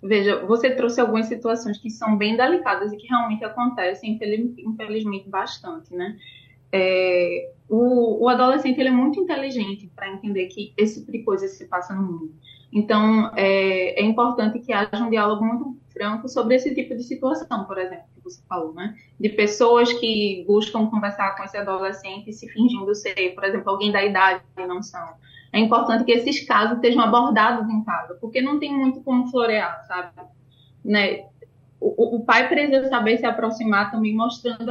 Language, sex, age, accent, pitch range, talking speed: Portuguese, female, 20-39, Brazilian, 195-245 Hz, 175 wpm